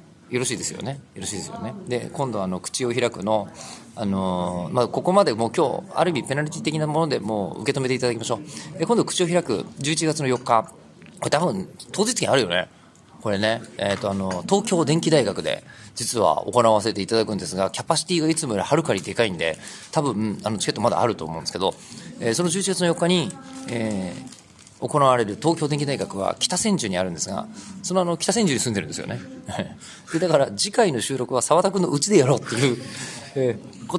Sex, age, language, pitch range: male, 40-59, Japanese, 110-170 Hz